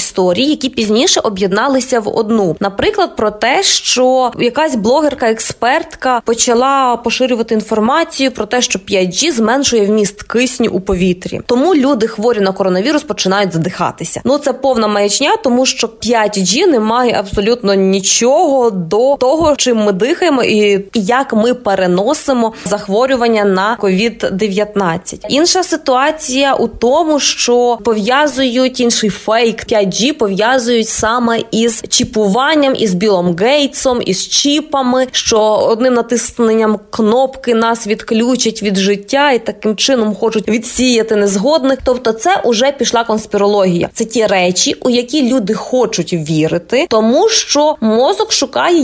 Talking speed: 125 wpm